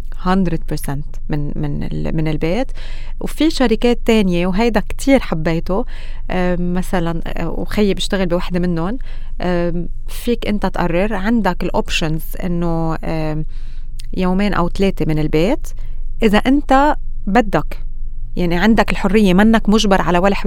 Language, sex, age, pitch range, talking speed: Arabic, female, 30-49, 165-225 Hz, 110 wpm